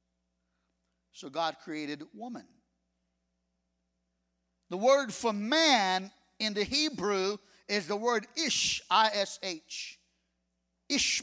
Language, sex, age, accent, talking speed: English, male, 50-69, American, 90 wpm